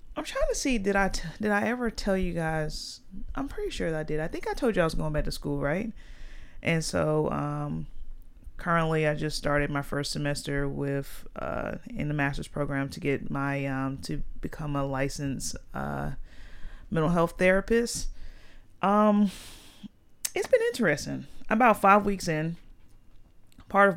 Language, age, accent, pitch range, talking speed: English, 30-49, American, 140-165 Hz, 170 wpm